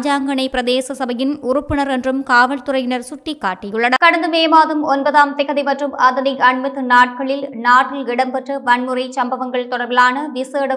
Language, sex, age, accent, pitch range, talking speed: English, male, 20-39, Indian, 250-275 Hz, 130 wpm